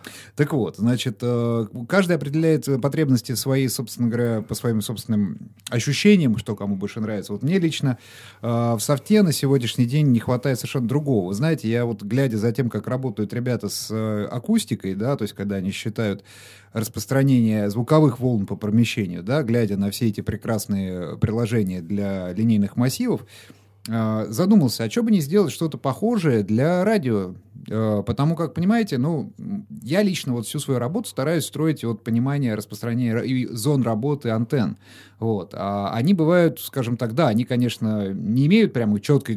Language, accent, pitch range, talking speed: Russian, native, 105-140 Hz, 160 wpm